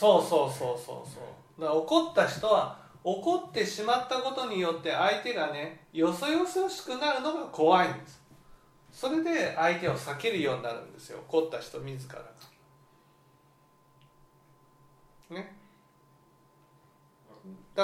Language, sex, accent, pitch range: Japanese, male, native, 145-240 Hz